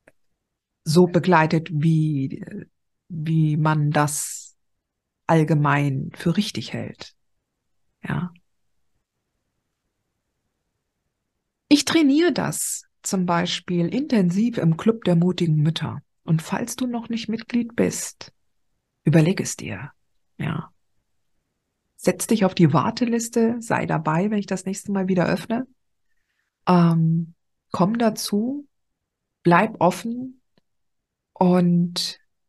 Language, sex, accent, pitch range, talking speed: German, female, German, 155-210 Hz, 95 wpm